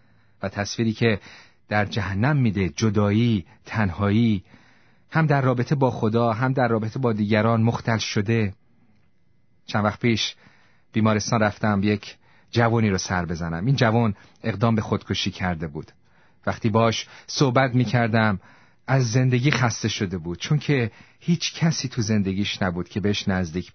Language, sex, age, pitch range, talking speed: Persian, male, 40-59, 105-135 Hz, 140 wpm